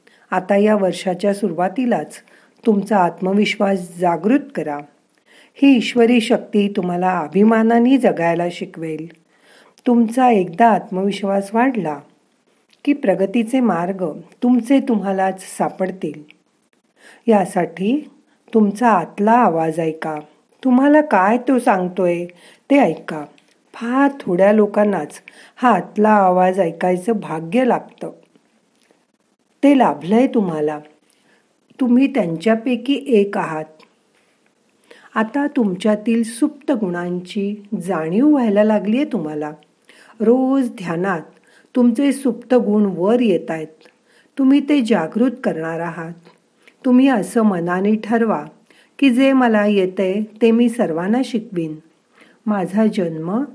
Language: Marathi